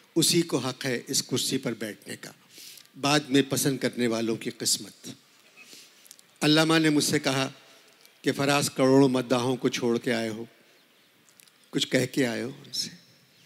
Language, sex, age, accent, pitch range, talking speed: Hindi, male, 50-69, native, 130-150 Hz, 155 wpm